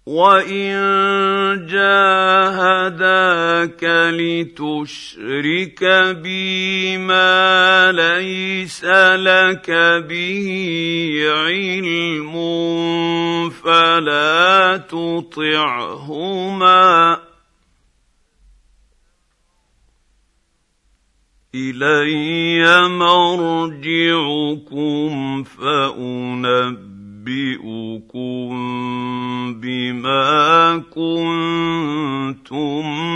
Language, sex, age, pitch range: Arabic, male, 50-69, 135-185 Hz